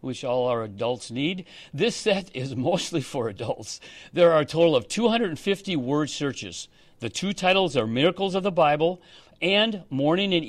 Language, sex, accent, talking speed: English, male, American, 170 wpm